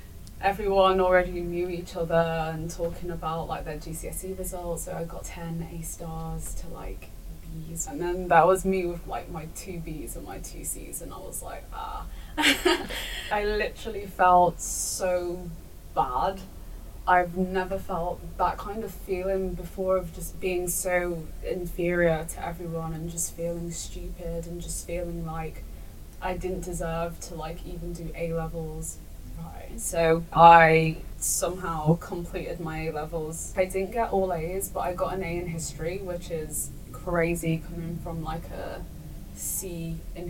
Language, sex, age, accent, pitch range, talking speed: English, female, 20-39, British, 165-180 Hz, 155 wpm